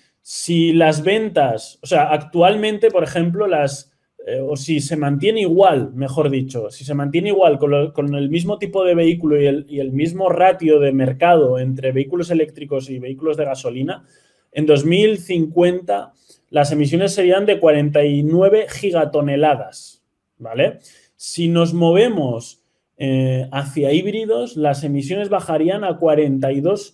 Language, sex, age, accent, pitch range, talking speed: Spanish, male, 20-39, Spanish, 135-170 Hz, 145 wpm